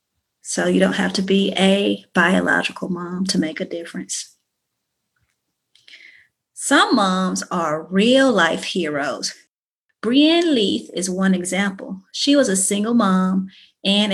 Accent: American